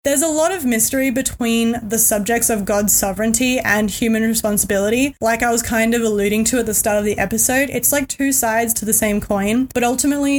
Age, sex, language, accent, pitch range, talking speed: 20-39, female, English, Australian, 210-250 Hz, 215 wpm